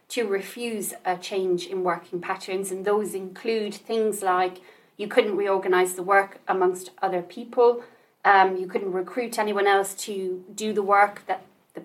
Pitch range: 190-215 Hz